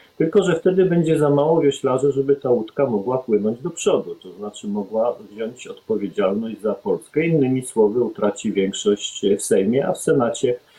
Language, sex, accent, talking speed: Polish, male, native, 165 wpm